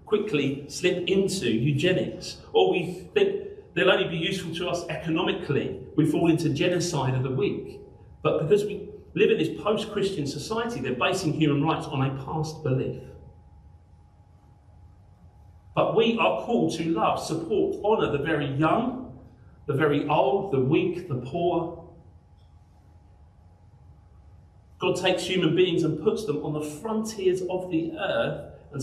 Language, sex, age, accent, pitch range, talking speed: English, male, 40-59, British, 135-195 Hz, 145 wpm